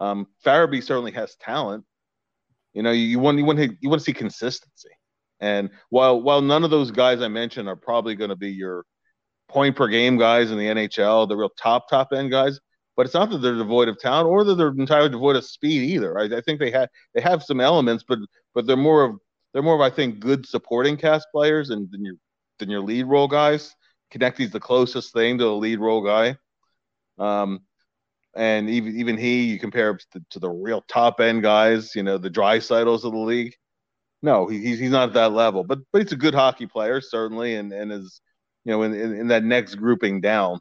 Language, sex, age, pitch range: English, male, 30-49, 110-135 Hz